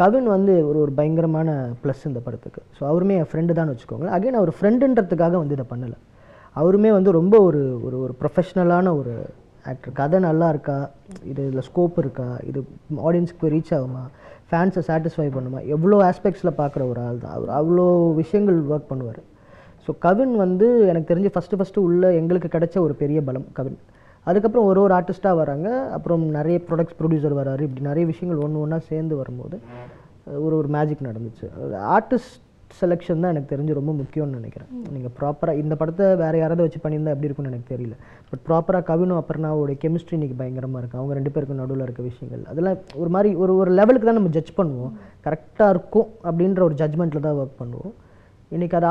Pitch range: 135-180 Hz